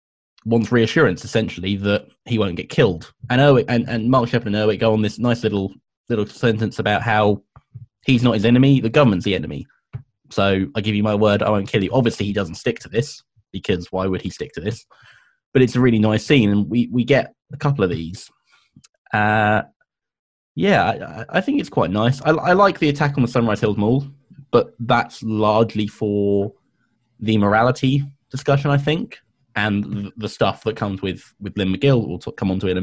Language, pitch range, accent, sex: English, 100-120 Hz, British, male